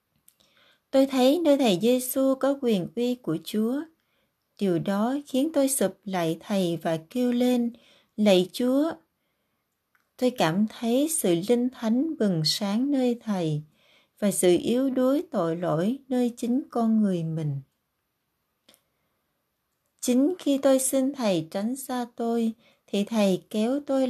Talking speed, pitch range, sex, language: 135 wpm, 185-255 Hz, female, Vietnamese